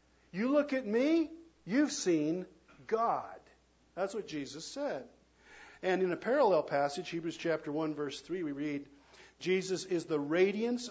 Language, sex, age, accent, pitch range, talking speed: English, male, 50-69, American, 135-170 Hz, 150 wpm